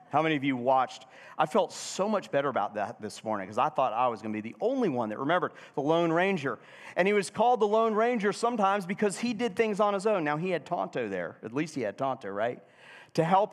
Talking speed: 255 wpm